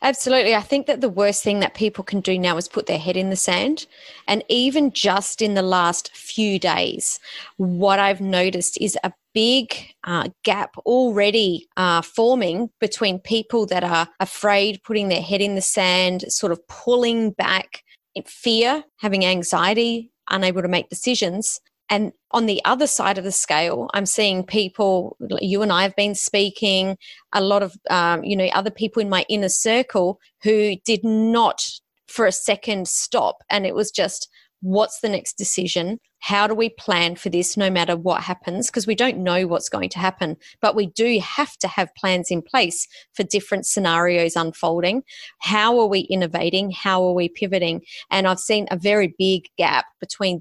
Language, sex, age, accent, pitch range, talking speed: English, female, 30-49, Australian, 185-220 Hz, 180 wpm